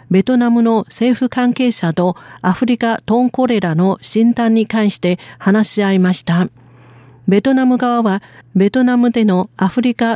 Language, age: Japanese, 50-69